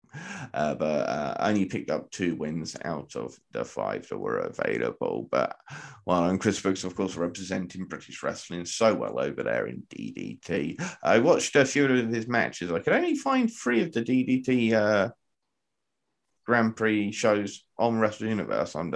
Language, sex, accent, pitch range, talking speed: English, male, British, 90-120 Hz, 175 wpm